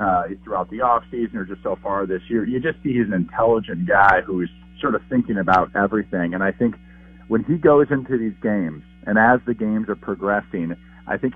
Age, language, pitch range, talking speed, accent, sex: 40-59, English, 90-120 Hz, 215 wpm, American, male